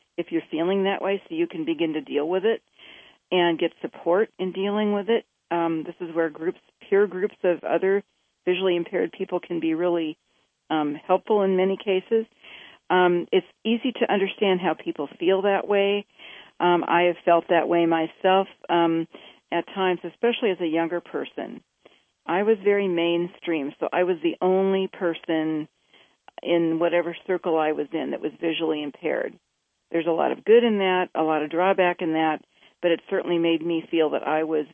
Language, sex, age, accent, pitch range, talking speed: English, female, 40-59, American, 165-195 Hz, 185 wpm